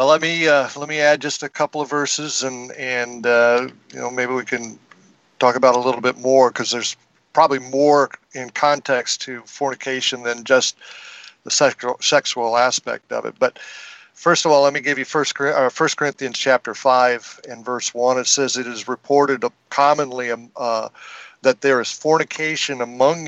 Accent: American